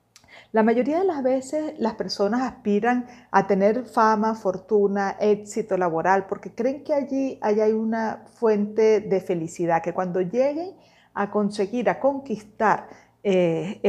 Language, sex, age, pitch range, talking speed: Spanish, female, 40-59, 200-260 Hz, 135 wpm